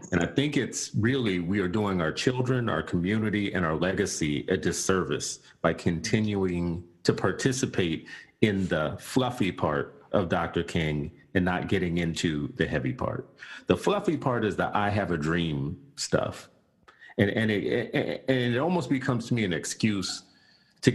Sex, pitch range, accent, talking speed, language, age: male, 85-115 Hz, American, 165 wpm, English, 40-59